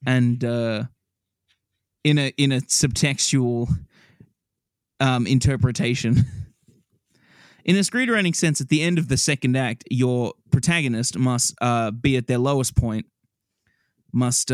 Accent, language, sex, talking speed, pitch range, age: Australian, English, male, 125 wpm, 125-155 Hz, 20-39